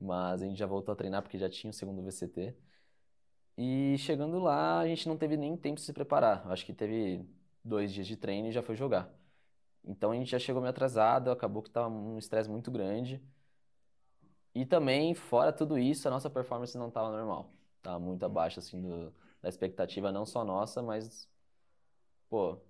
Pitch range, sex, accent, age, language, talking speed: 95-125 Hz, male, Brazilian, 20-39, Portuguese, 195 wpm